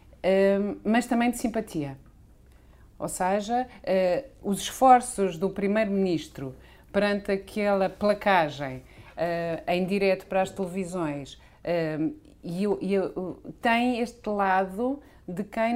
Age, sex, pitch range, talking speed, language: 40-59, female, 155-210 Hz, 90 wpm, Portuguese